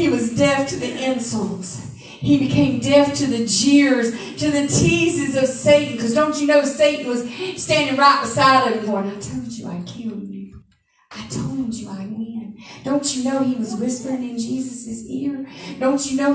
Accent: American